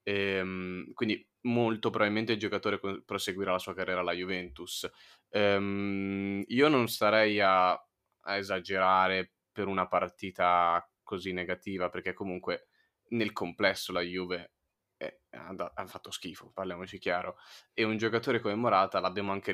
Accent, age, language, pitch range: native, 20-39, Italian, 90-100 Hz